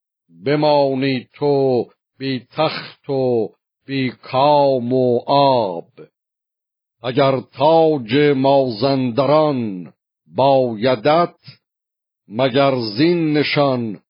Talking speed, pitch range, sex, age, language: 60 wpm, 125-140 Hz, male, 50-69, Persian